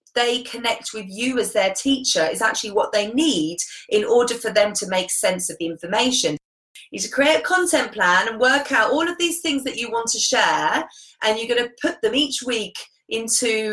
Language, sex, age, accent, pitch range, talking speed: English, female, 30-49, British, 200-280 Hz, 215 wpm